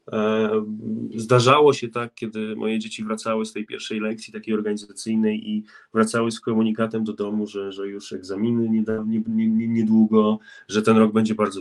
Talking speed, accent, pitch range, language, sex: 155 wpm, native, 105-120 Hz, Polish, male